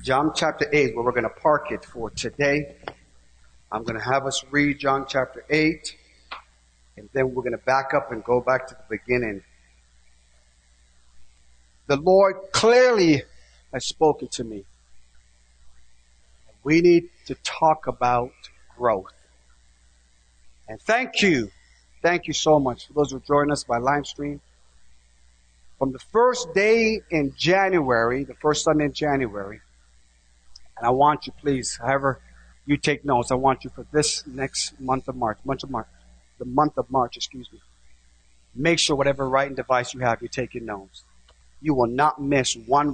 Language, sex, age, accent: English, male, 50-69, American